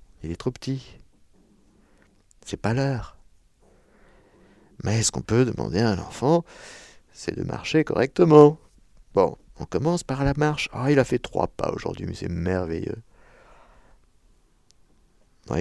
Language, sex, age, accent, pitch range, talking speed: French, male, 50-69, French, 95-150 Hz, 140 wpm